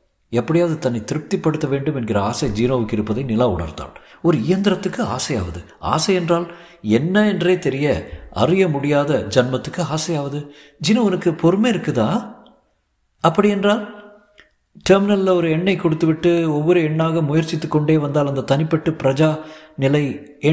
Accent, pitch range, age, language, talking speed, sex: native, 145-185 Hz, 50-69, Tamil, 120 wpm, male